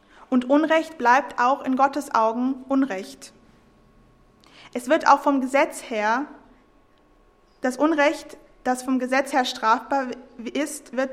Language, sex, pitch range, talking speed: English, female, 235-275 Hz, 125 wpm